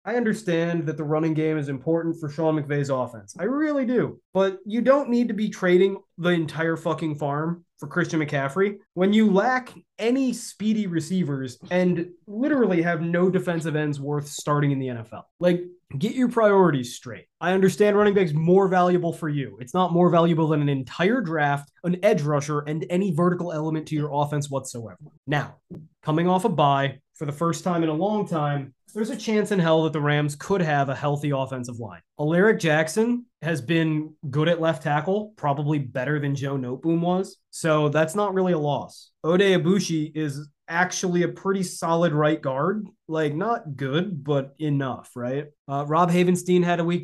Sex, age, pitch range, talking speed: male, 20-39, 145-185 Hz, 190 wpm